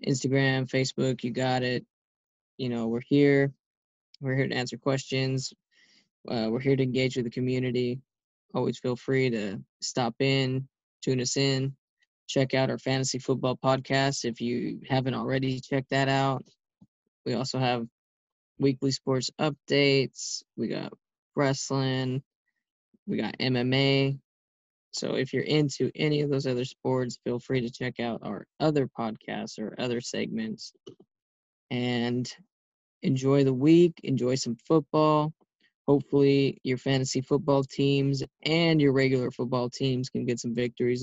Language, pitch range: English, 125-140 Hz